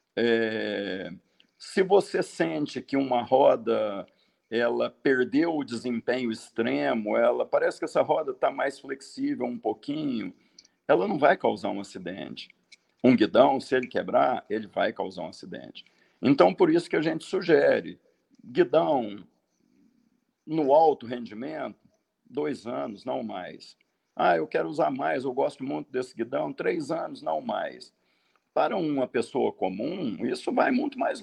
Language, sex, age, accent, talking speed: Portuguese, male, 50-69, Brazilian, 140 wpm